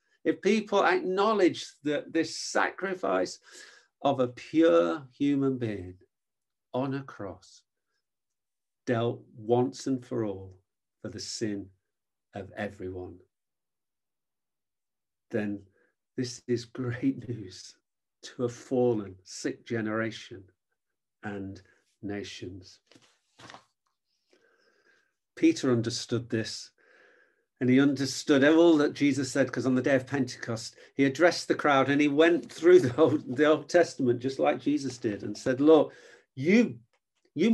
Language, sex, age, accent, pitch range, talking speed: English, male, 50-69, British, 110-155 Hz, 120 wpm